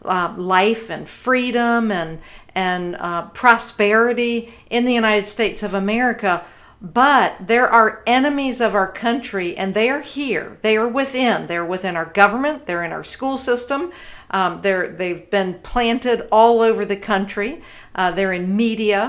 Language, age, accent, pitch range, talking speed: English, 50-69, American, 190-235 Hz, 155 wpm